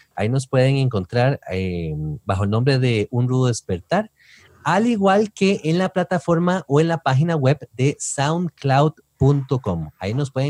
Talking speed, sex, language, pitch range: 160 wpm, male, English, 115-160 Hz